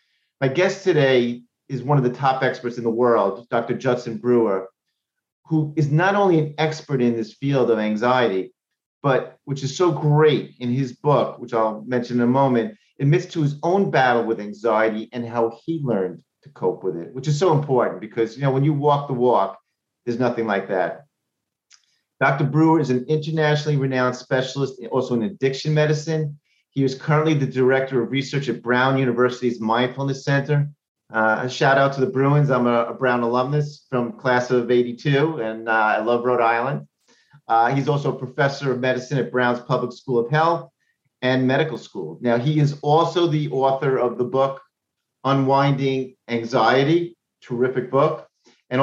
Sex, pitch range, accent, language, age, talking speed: male, 120-145 Hz, American, English, 40-59, 180 wpm